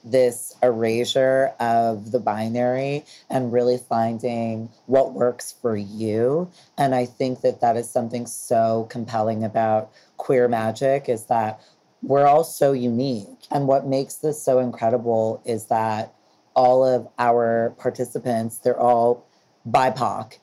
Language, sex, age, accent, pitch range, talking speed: English, female, 30-49, American, 115-130 Hz, 130 wpm